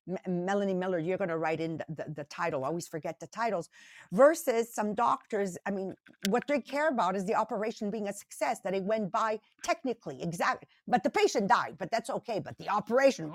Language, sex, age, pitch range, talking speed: English, female, 50-69, 195-265 Hz, 205 wpm